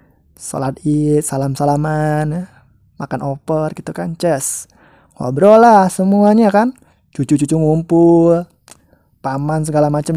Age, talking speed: 20-39, 105 wpm